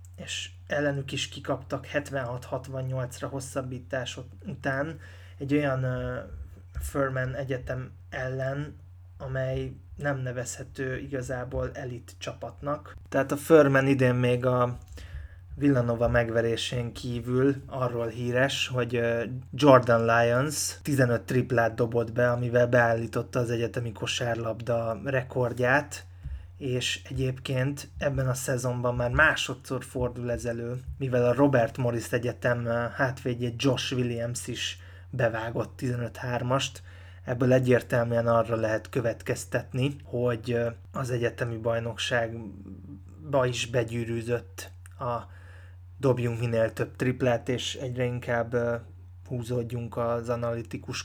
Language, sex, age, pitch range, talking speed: Hungarian, male, 20-39, 115-130 Hz, 100 wpm